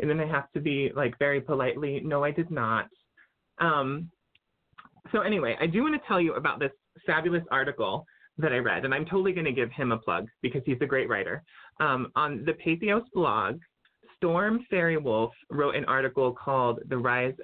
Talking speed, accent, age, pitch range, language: 195 wpm, American, 30-49, 125-175 Hz, English